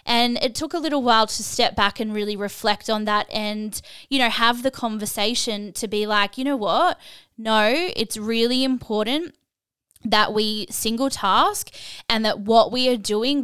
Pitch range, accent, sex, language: 210-250 Hz, Australian, female, English